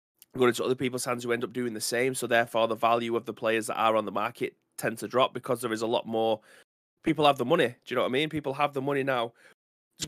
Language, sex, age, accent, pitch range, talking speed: English, male, 20-39, British, 110-125 Hz, 285 wpm